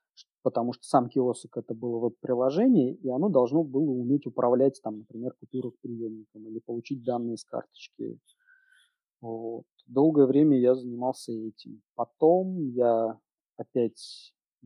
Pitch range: 115-155 Hz